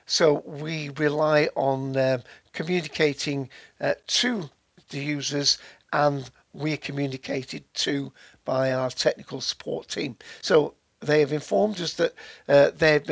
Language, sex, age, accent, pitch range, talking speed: English, male, 60-79, British, 135-160 Hz, 125 wpm